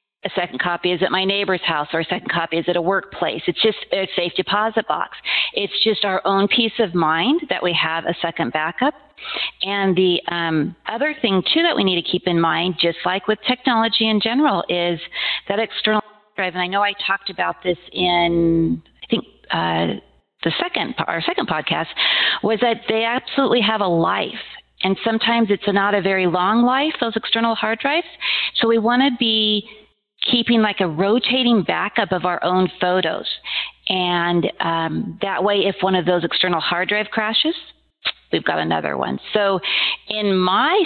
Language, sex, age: English, female, 40-59